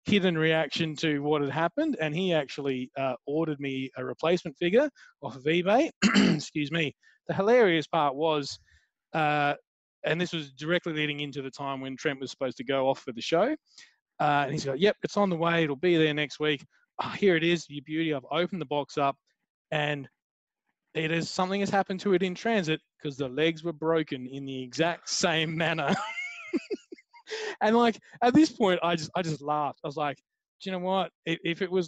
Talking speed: 200 wpm